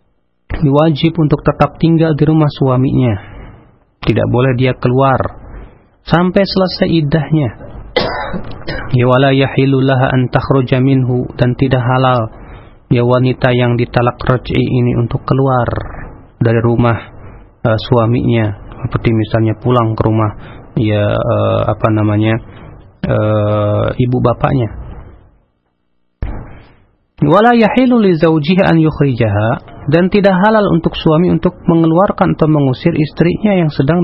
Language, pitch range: Indonesian, 110-155 Hz